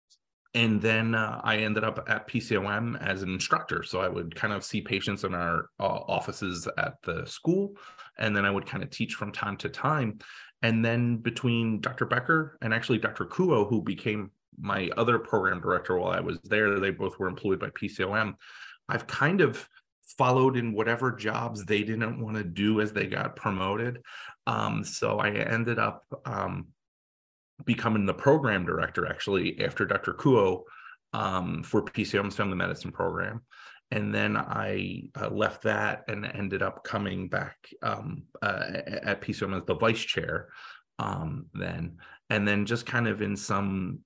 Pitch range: 100-120 Hz